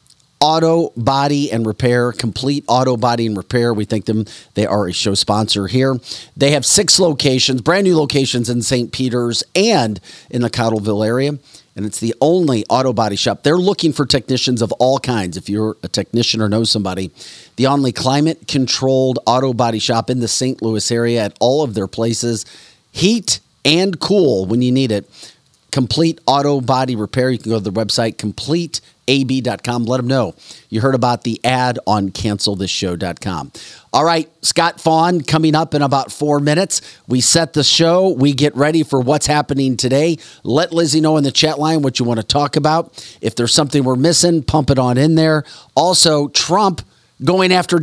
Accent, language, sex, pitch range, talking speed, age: American, English, male, 115-155 Hz, 185 wpm, 40-59